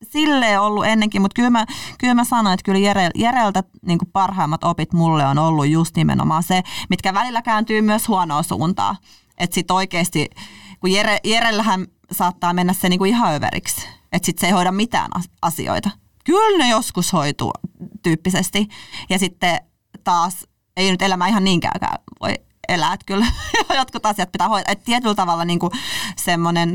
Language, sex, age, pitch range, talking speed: Finnish, female, 30-49, 170-210 Hz, 150 wpm